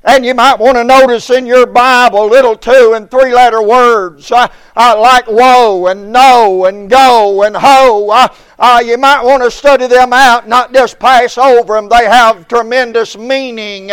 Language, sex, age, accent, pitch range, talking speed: English, male, 60-79, American, 230-260 Hz, 175 wpm